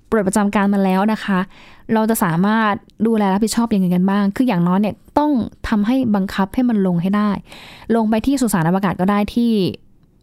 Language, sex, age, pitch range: Thai, female, 10-29, 185-230 Hz